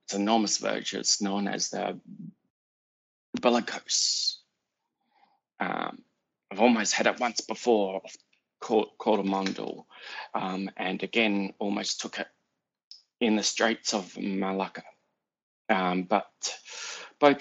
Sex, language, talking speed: male, English, 110 wpm